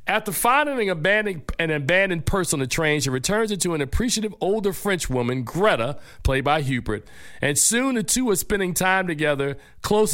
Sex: male